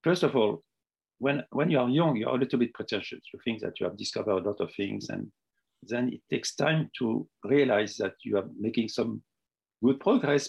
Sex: male